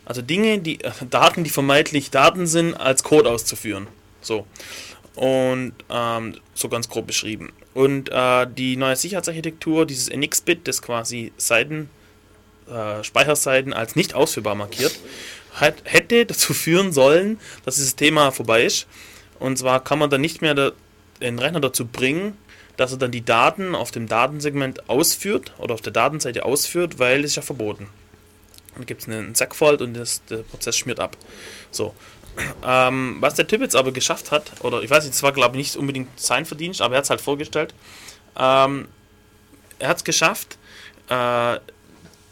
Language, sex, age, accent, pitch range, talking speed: German, male, 20-39, German, 110-150 Hz, 165 wpm